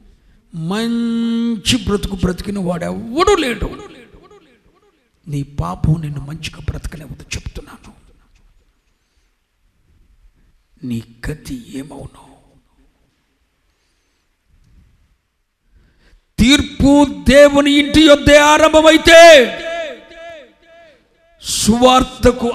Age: 60-79